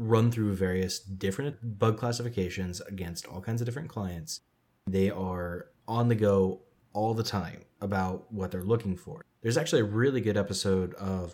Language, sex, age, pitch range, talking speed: English, male, 20-39, 90-110 Hz, 170 wpm